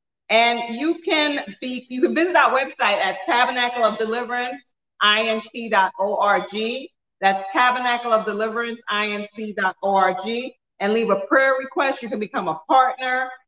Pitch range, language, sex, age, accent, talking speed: 205-255 Hz, English, female, 40-59, American, 100 wpm